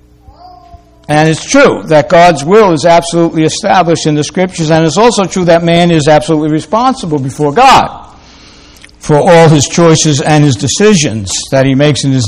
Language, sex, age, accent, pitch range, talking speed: English, male, 60-79, American, 110-165 Hz, 170 wpm